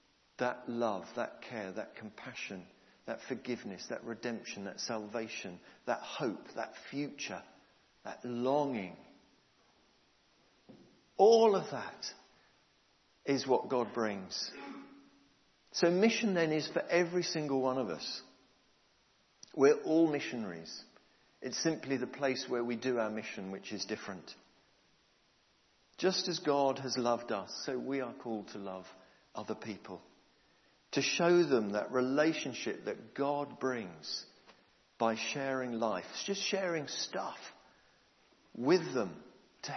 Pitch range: 115-165 Hz